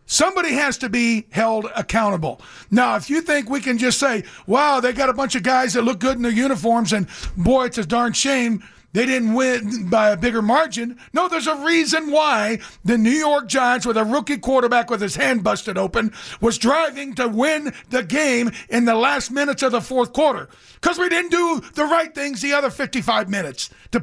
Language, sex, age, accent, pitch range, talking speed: English, male, 50-69, American, 225-280 Hz, 210 wpm